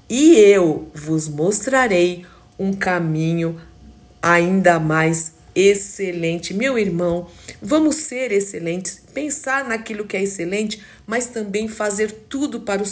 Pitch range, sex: 170-215 Hz, female